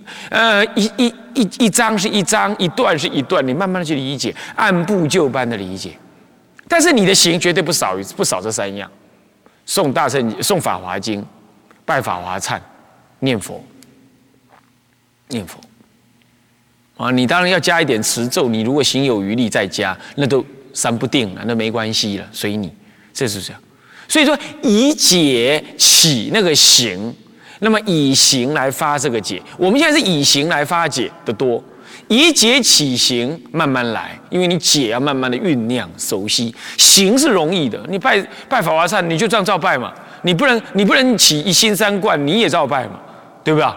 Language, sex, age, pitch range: Chinese, male, 30-49, 130-220 Hz